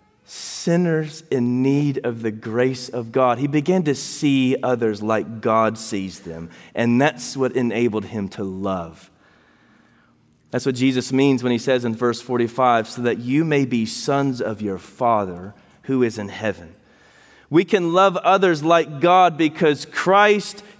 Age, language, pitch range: 30-49, English, 130-195 Hz